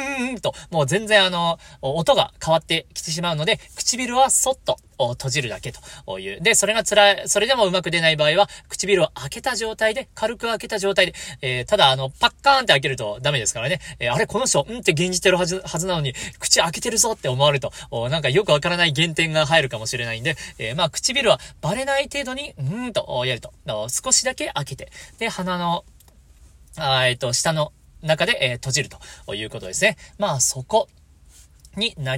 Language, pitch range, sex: Japanese, 135-205 Hz, male